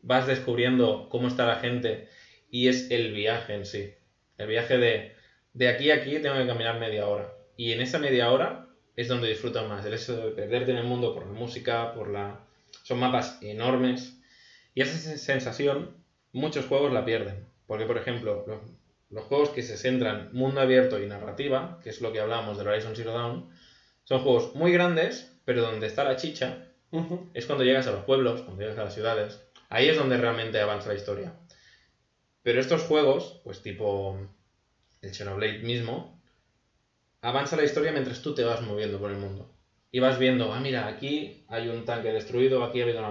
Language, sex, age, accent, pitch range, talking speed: Spanish, male, 20-39, Spanish, 110-130 Hz, 190 wpm